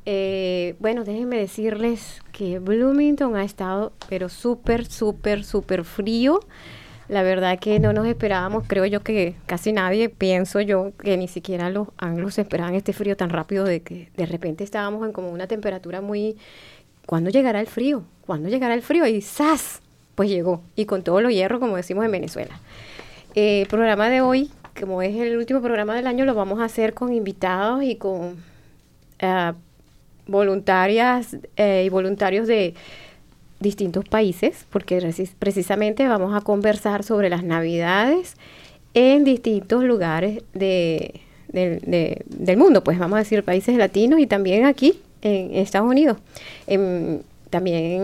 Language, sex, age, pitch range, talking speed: English, female, 20-39, 185-225 Hz, 155 wpm